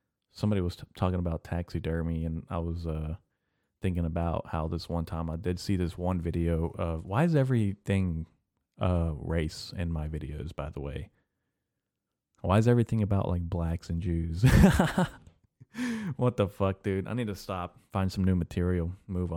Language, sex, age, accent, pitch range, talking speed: English, male, 30-49, American, 85-100 Hz, 165 wpm